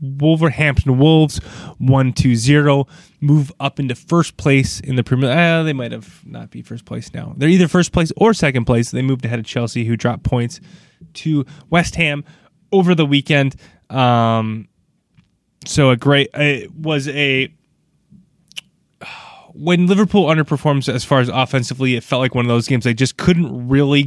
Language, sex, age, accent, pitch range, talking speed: English, male, 20-39, American, 120-150 Hz, 175 wpm